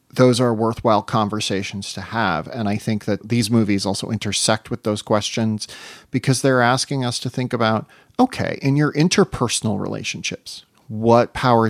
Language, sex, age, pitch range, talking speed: English, male, 40-59, 110-130 Hz, 160 wpm